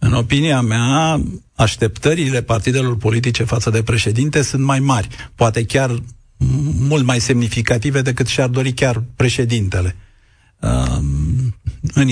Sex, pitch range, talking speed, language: male, 110-130 Hz, 115 wpm, Romanian